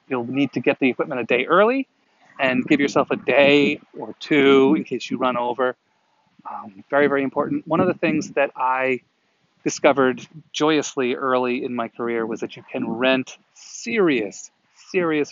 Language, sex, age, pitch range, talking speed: English, male, 30-49, 125-155 Hz, 170 wpm